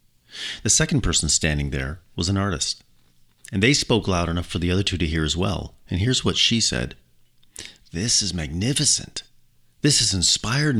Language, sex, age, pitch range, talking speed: English, male, 40-59, 75-105 Hz, 180 wpm